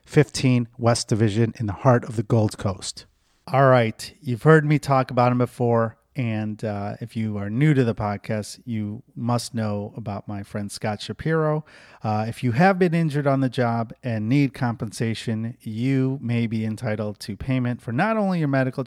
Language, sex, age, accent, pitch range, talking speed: English, male, 30-49, American, 110-135 Hz, 190 wpm